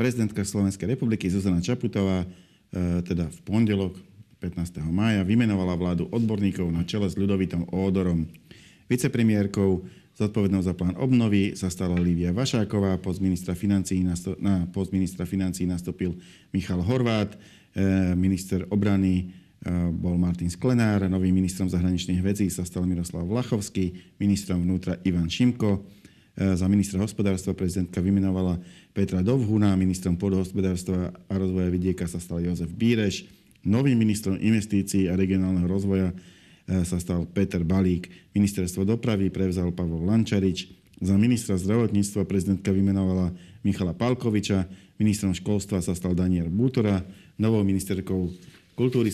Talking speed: 120 wpm